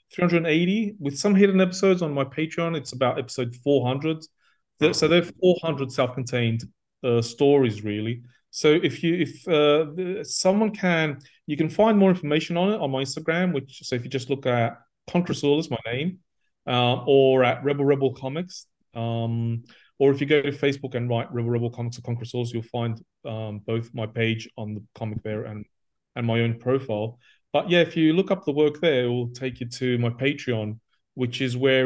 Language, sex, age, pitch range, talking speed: English, male, 30-49, 115-150 Hz, 200 wpm